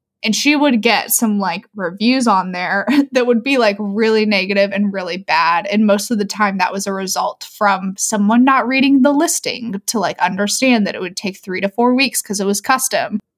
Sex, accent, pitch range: female, American, 200-250 Hz